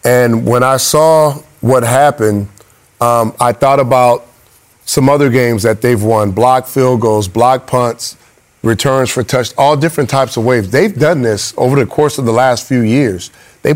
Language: English